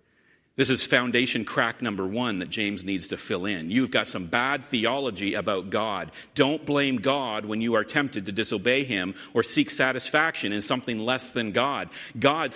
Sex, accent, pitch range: male, American, 110-145 Hz